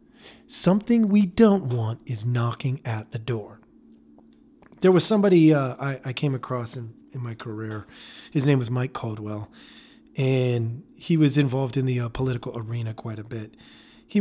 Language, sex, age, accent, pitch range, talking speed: English, male, 40-59, American, 130-190 Hz, 165 wpm